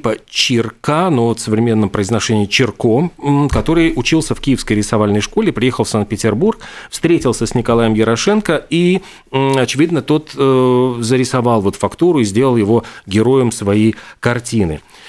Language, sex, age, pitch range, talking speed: Russian, male, 40-59, 110-135 Hz, 125 wpm